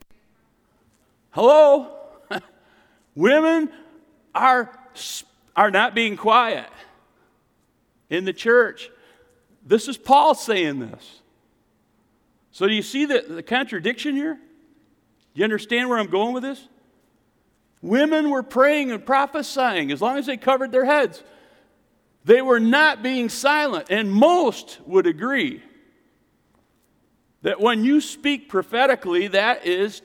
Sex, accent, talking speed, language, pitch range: male, American, 120 wpm, English, 190-290 Hz